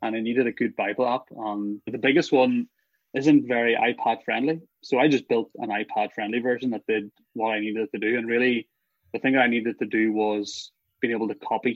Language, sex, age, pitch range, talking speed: English, male, 20-39, 110-135 Hz, 230 wpm